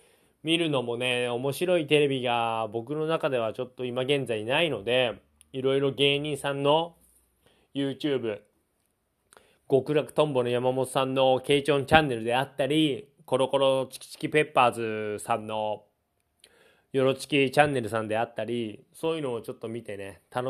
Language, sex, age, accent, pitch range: Japanese, male, 20-39, native, 125-160 Hz